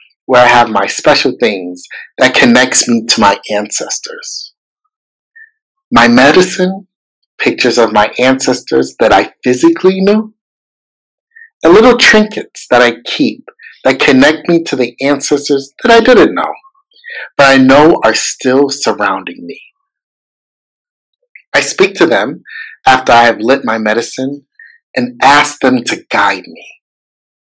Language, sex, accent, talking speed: English, male, American, 135 wpm